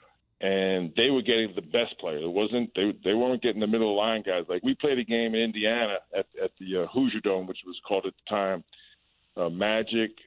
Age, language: 50-69, English